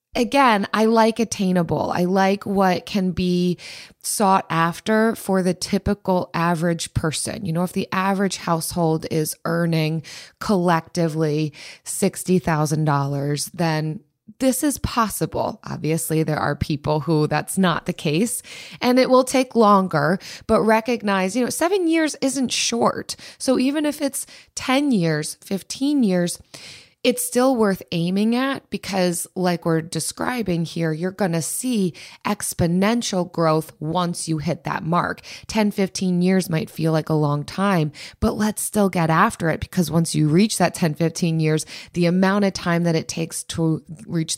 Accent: American